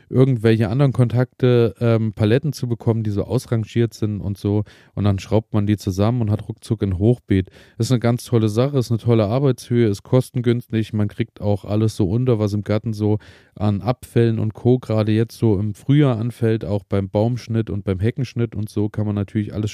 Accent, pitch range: German, 105-125 Hz